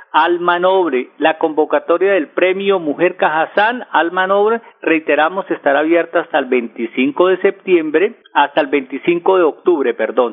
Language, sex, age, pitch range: Spanish, male, 50-69, 150-195 Hz